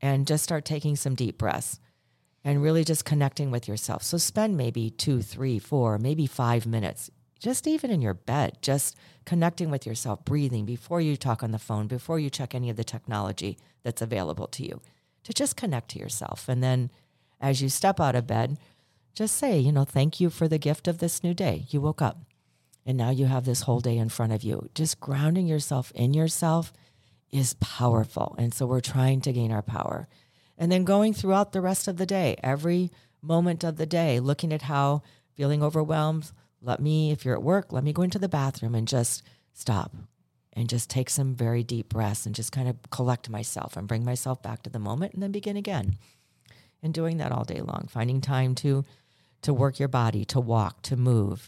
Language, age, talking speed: English, 40-59, 210 wpm